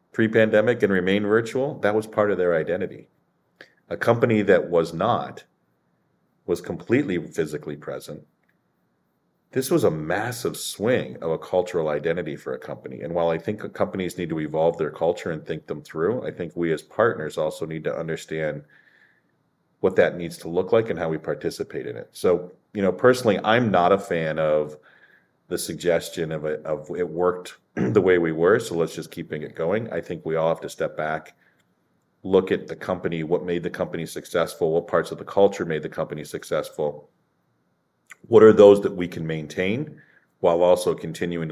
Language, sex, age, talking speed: English, male, 40-59, 185 wpm